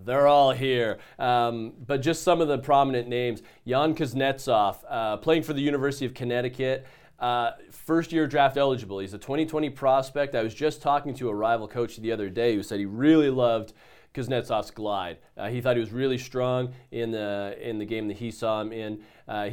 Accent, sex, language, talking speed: American, male, English, 195 wpm